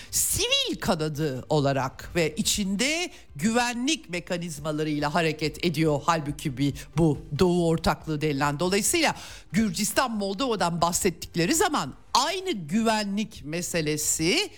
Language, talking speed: Turkish, 90 wpm